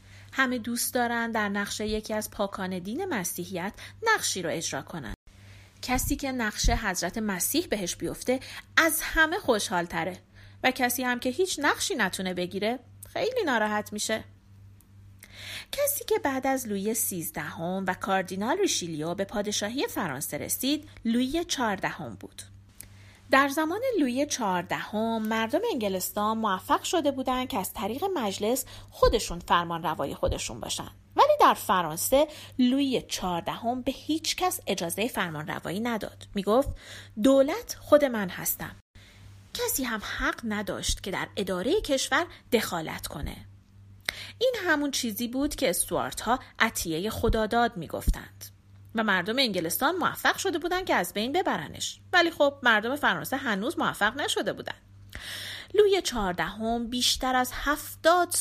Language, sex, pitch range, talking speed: Persian, female, 170-270 Hz, 135 wpm